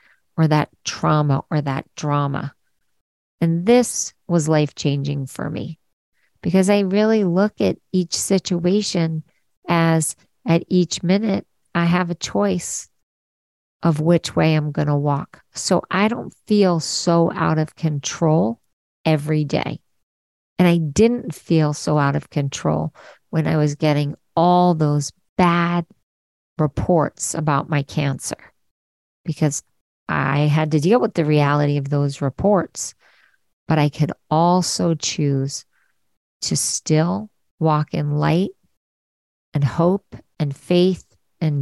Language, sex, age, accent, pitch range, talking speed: English, female, 50-69, American, 145-175 Hz, 130 wpm